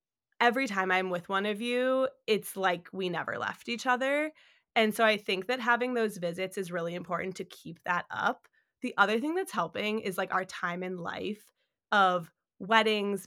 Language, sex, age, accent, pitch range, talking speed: English, female, 20-39, American, 185-225 Hz, 190 wpm